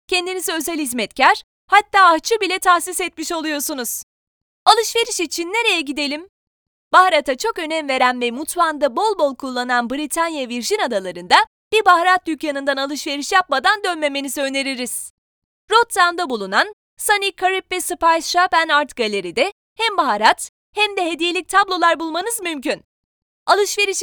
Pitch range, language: 275-370 Hz, Turkish